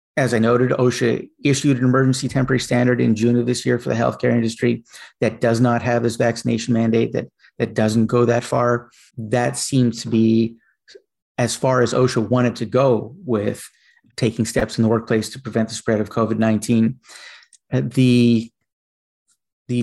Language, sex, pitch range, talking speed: English, male, 115-130 Hz, 165 wpm